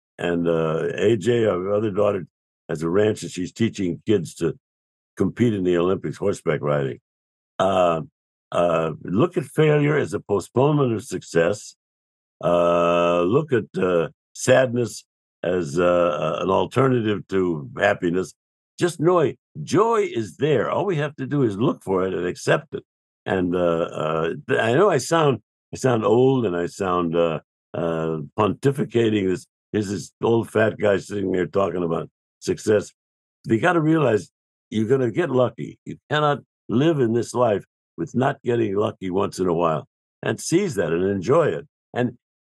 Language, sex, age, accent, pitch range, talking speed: English, male, 60-79, American, 85-135 Hz, 165 wpm